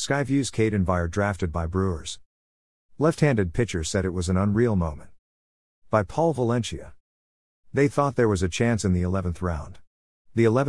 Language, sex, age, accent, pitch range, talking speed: English, male, 50-69, American, 85-120 Hz, 155 wpm